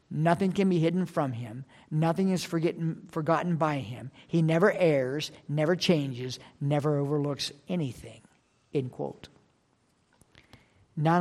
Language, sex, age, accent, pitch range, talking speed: English, male, 50-69, American, 145-175 Hz, 120 wpm